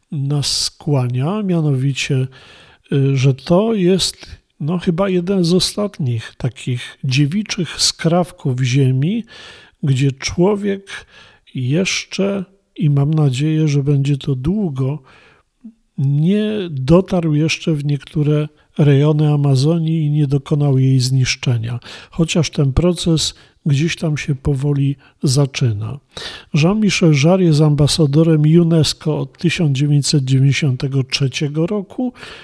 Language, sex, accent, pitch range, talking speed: Polish, male, native, 135-180 Hz, 95 wpm